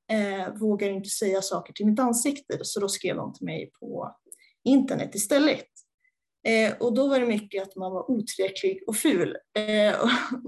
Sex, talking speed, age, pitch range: female, 180 wpm, 20-39, 205-260 Hz